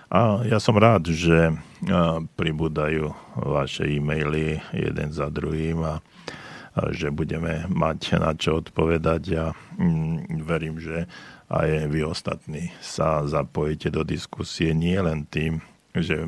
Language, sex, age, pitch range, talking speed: Slovak, male, 50-69, 80-90 Hz, 120 wpm